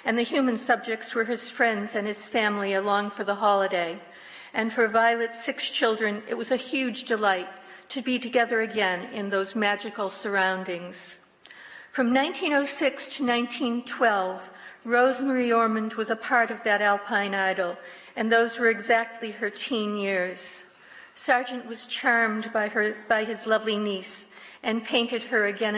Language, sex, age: English, female, 50-69